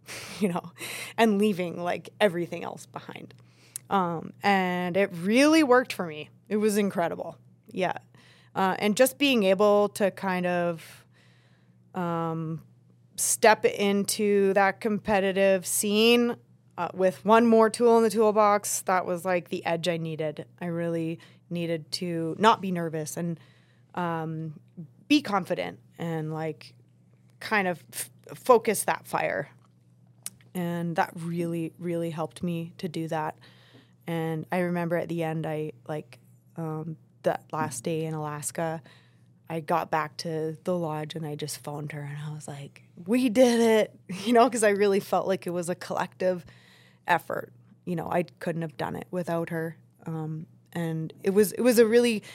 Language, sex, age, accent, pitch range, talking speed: English, female, 20-39, American, 155-200 Hz, 155 wpm